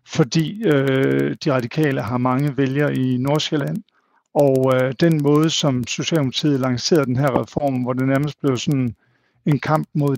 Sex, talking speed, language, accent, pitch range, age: male, 160 wpm, Danish, native, 135-160 Hz, 50-69